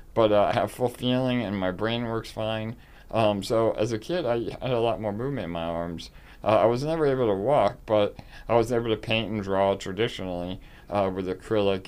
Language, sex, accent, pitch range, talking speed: English, male, American, 100-120 Hz, 220 wpm